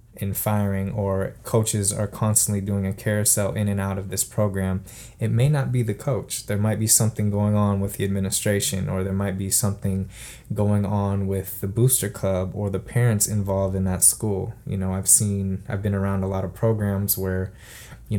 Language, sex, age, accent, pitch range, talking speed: English, male, 20-39, American, 95-110 Hz, 200 wpm